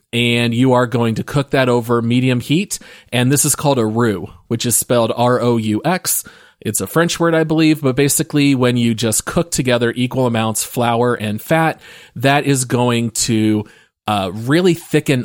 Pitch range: 115-145 Hz